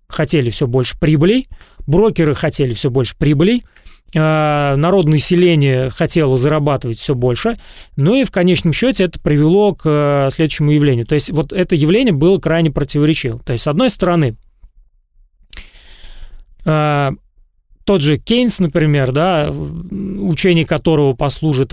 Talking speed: 125 wpm